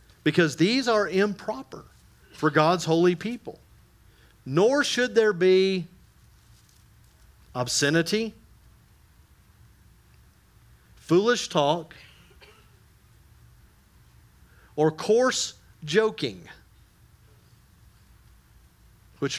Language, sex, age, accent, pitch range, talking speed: English, male, 40-59, American, 125-175 Hz, 60 wpm